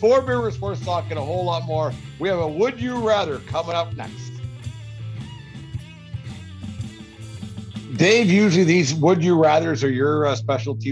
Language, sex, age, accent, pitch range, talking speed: English, male, 60-79, American, 115-145 Hz, 150 wpm